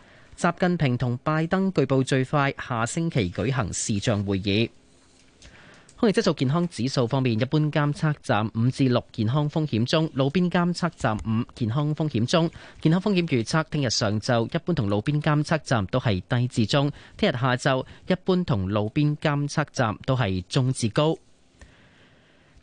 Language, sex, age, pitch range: Chinese, male, 30-49, 115-155 Hz